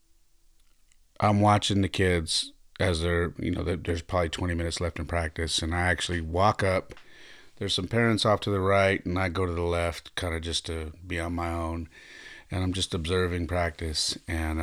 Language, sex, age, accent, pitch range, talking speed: English, male, 40-59, American, 80-95 Hz, 195 wpm